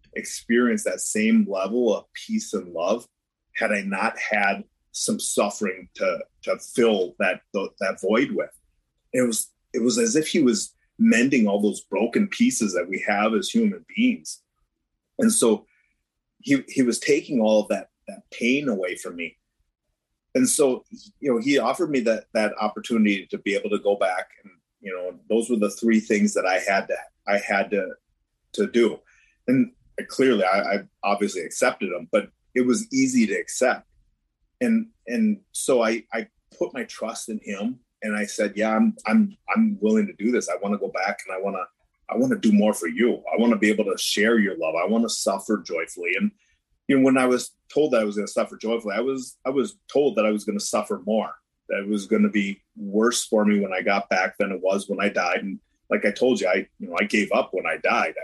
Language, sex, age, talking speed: English, male, 30-49, 215 wpm